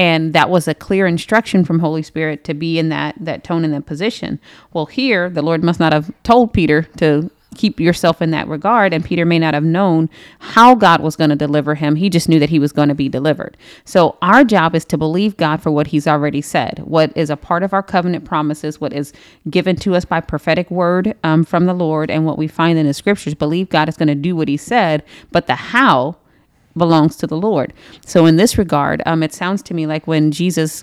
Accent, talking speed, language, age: American, 240 wpm, English, 30-49